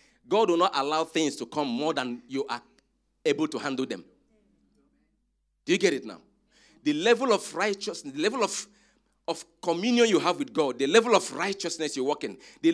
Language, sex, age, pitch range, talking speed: English, male, 40-59, 165-240 Hz, 195 wpm